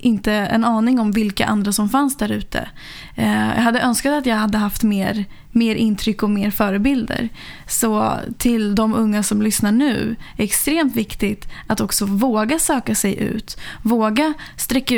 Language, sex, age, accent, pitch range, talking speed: Swedish, female, 10-29, native, 210-245 Hz, 170 wpm